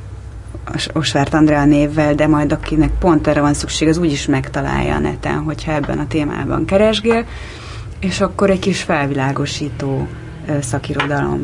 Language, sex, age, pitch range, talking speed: Hungarian, female, 30-49, 135-160 Hz, 140 wpm